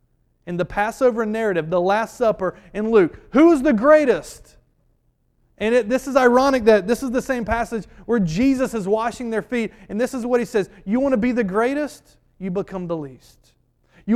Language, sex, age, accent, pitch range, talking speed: English, male, 30-49, American, 160-230 Hz, 200 wpm